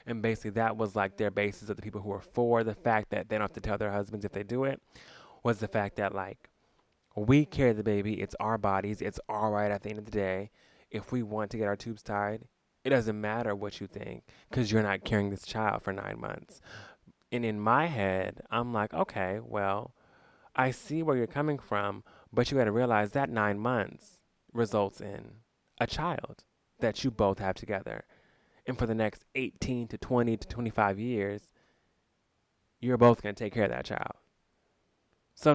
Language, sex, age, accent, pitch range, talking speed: English, male, 20-39, American, 100-120 Hz, 205 wpm